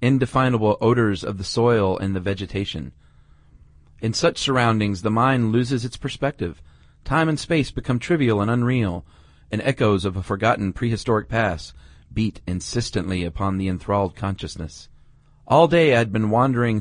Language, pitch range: English, 100-130 Hz